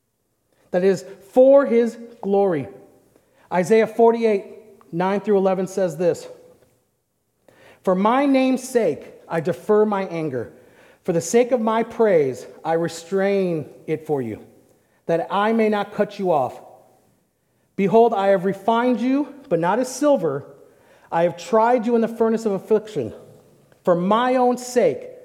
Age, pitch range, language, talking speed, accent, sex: 40-59, 185-255 Hz, English, 145 wpm, American, male